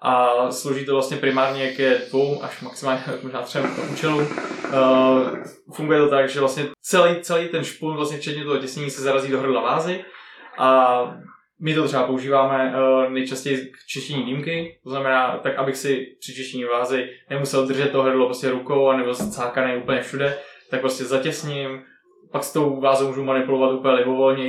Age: 20-39